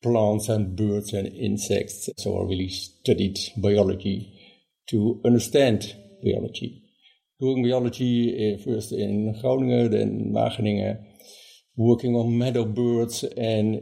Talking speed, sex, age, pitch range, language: 110 wpm, male, 60-79, 105-130 Hz, English